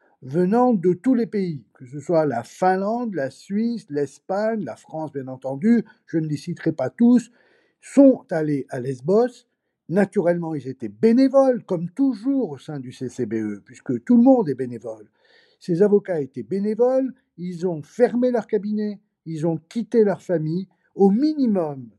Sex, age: male, 50-69